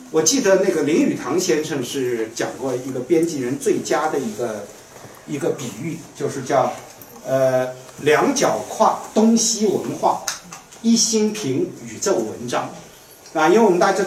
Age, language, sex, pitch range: 50-69, Chinese, male, 135-210 Hz